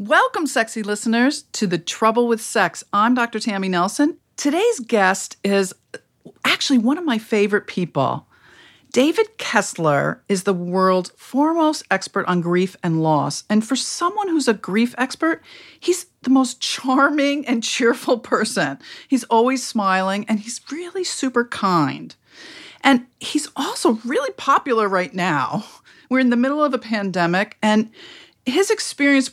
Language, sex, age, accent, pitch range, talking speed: English, female, 40-59, American, 195-275 Hz, 145 wpm